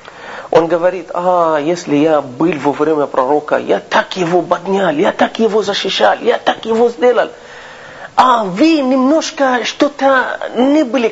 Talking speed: 145 wpm